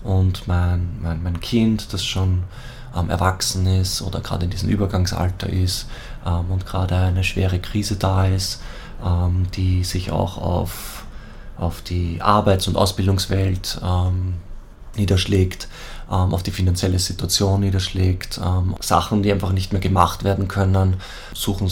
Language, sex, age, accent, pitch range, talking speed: German, male, 20-39, German, 90-100 Hz, 145 wpm